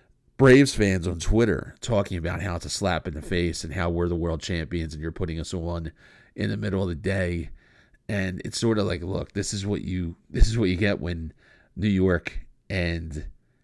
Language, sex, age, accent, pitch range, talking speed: English, male, 40-59, American, 85-100 Hz, 215 wpm